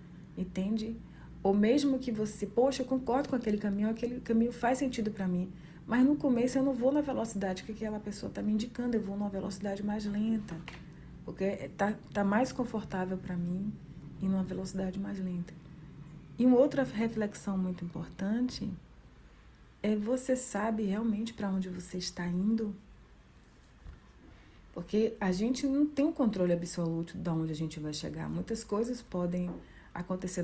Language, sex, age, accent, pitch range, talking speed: Portuguese, female, 40-59, Brazilian, 175-220 Hz, 160 wpm